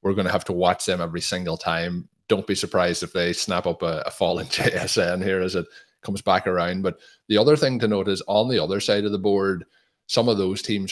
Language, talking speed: English, 245 wpm